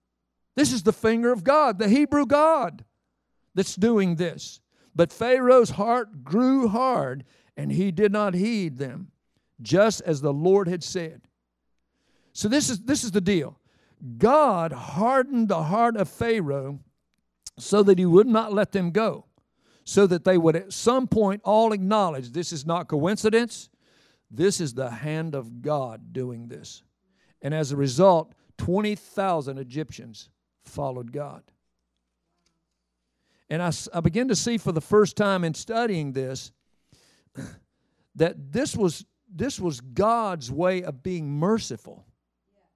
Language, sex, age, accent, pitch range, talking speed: English, male, 60-79, American, 140-220 Hz, 140 wpm